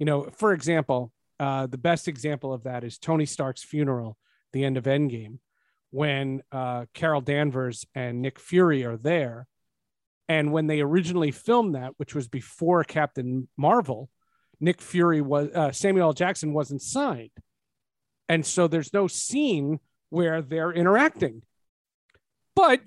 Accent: American